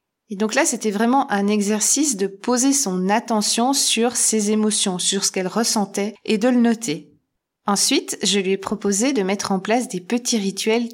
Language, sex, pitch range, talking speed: French, female, 185-235 Hz, 185 wpm